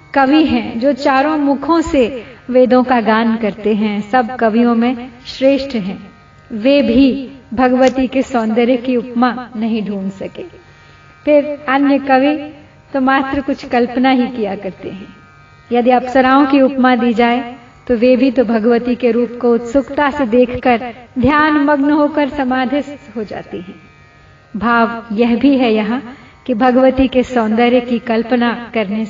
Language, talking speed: Hindi, 155 wpm